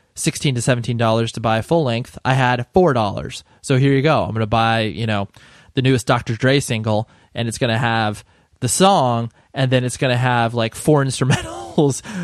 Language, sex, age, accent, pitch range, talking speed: English, male, 20-39, American, 115-150 Hz, 195 wpm